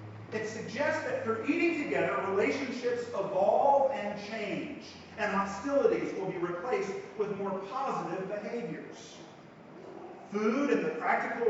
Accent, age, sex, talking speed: American, 40-59, male, 120 wpm